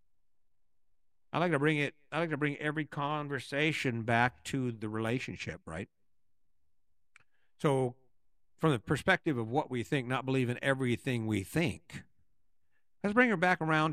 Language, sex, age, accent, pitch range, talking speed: English, male, 50-69, American, 105-135 Hz, 150 wpm